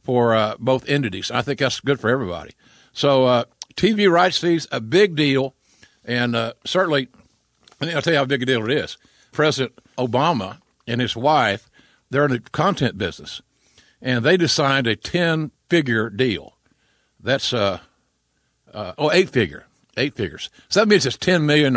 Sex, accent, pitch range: male, American, 120-155 Hz